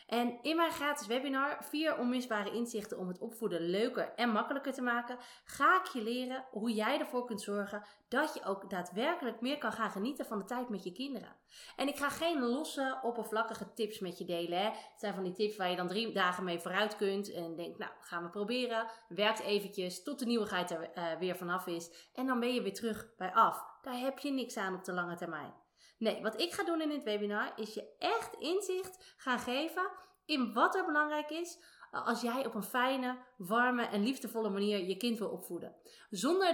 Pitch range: 190-255 Hz